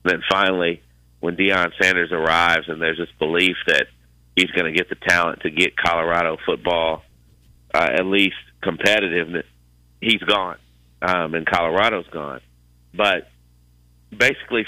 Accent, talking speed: American, 140 wpm